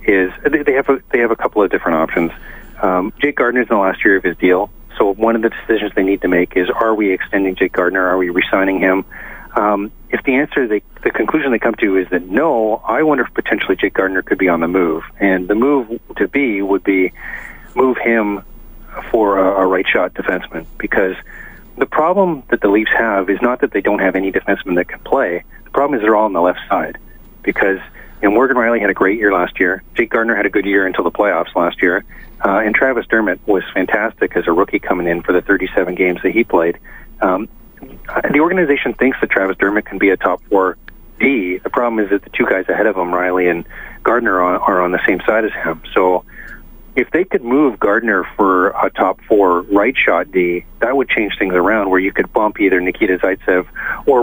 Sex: male